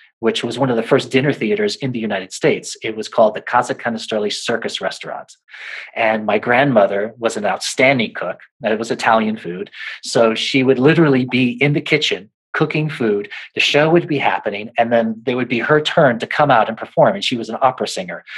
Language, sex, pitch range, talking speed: English, male, 115-150 Hz, 210 wpm